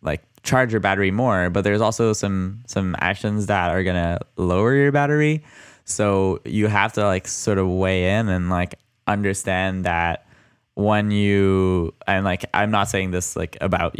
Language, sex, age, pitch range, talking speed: English, male, 10-29, 95-110 Hz, 175 wpm